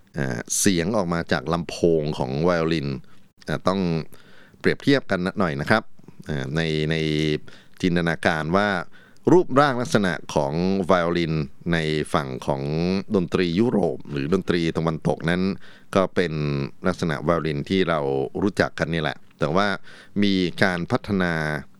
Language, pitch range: Thai, 75-95 Hz